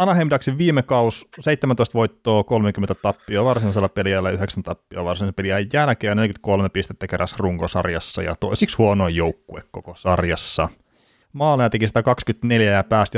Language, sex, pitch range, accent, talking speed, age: Finnish, male, 95-115 Hz, native, 130 wpm, 30-49